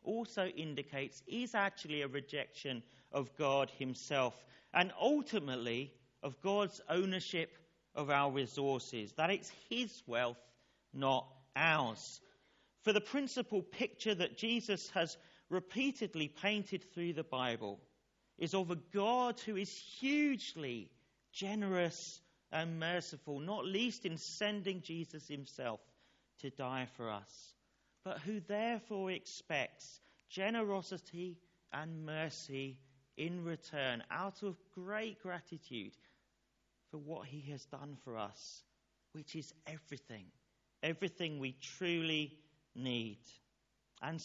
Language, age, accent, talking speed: English, 40-59, British, 115 wpm